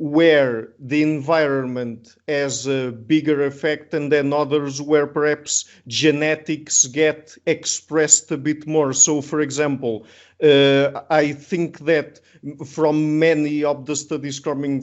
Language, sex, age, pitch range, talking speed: English, male, 50-69, 140-155 Hz, 125 wpm